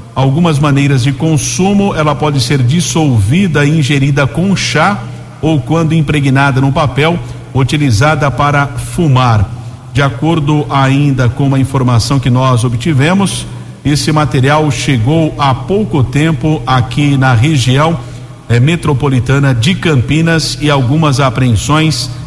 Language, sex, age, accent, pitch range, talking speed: Portuguese, male, 50-69, Brazilian, 125-150 Hz, 120 wpm